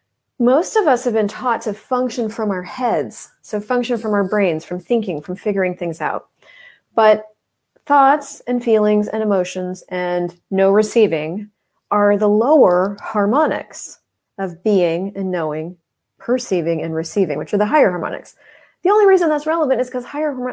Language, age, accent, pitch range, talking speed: English, 30-49, American, 180-230 Hz, 160 wpm